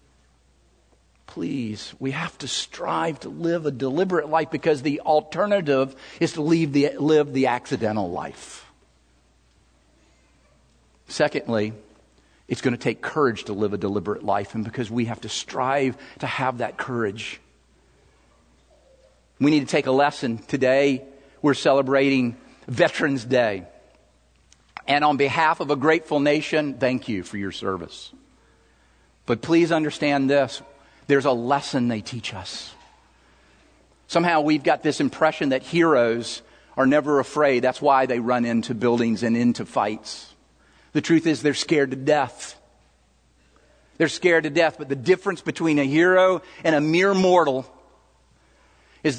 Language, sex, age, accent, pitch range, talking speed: English, male, 50-69, American, 105-150 Hz, 140 wpm